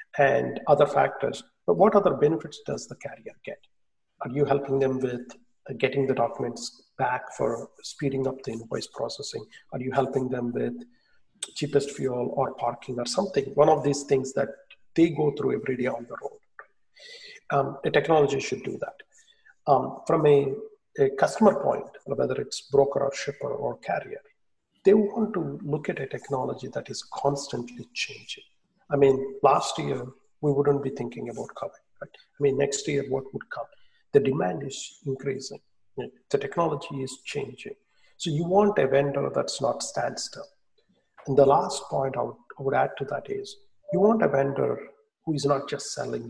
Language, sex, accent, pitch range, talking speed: English, male, Indian, 135-165 Hz, 170 wpm